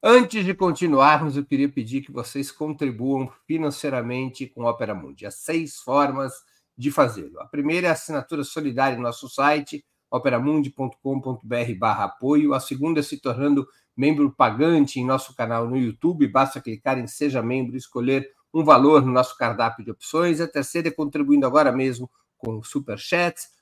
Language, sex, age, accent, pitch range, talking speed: Portuguese, male, 50-69, Brazilian, 125-155 Hz, 165 wpm